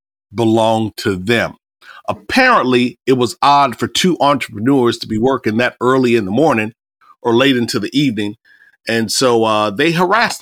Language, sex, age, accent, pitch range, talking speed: English, male, 40-59, American, 110-135 Hz, 160 wpm